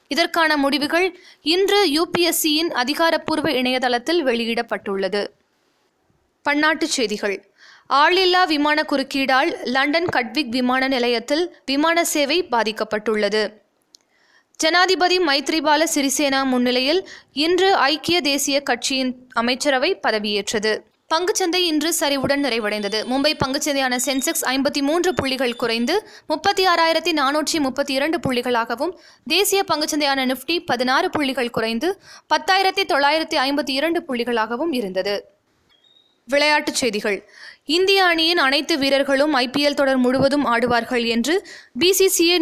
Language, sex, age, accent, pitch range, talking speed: Tamil, female, 20-39, native, 255-330 Hz, 90 wpm